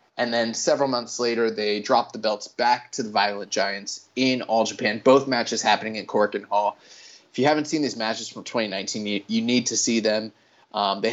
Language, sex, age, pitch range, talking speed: English, male, 20-39, 110-130 Hz, 215 wpm